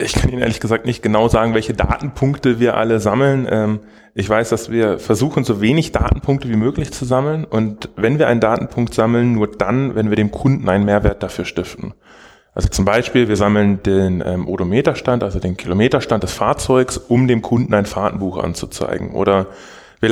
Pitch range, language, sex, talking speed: 105-130 Hz, German, male, 180 wpm